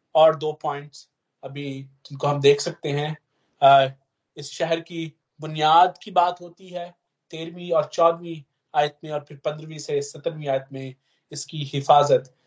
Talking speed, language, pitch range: 140 wpm, Hindi, 140-180 Hz